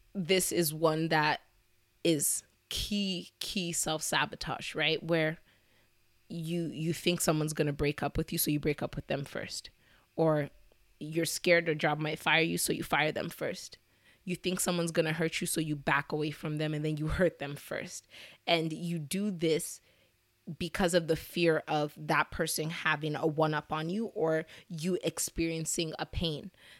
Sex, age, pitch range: female, 20-39, 155-175 Hz